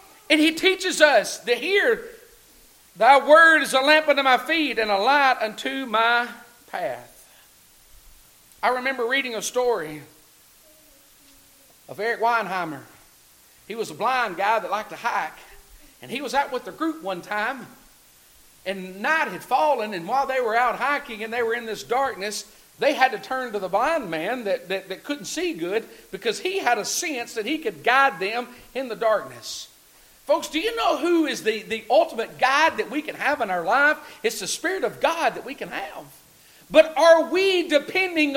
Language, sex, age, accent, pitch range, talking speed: English, male, 50-69, American, 240-320 Hz, 185 wpm